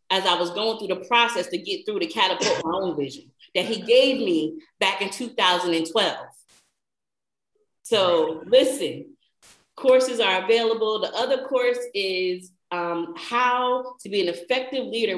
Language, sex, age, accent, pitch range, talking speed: English, female, 30-49, American, 180-225 Hz, 150 wpm